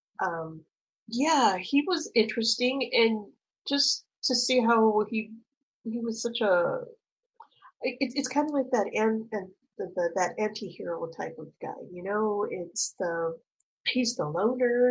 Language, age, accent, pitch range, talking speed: English, 40-59, American, 185-255 Hz, 130 wpm